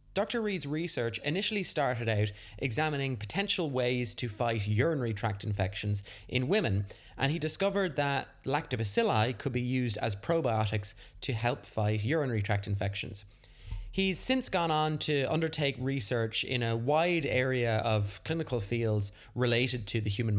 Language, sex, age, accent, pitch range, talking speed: English, male, 20-39, British, 105-145 Hz, 145 wpm